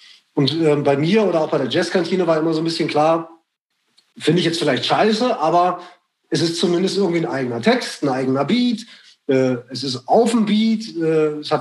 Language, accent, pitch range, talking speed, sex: German, German, 155-190 Hz, 205 wpm, male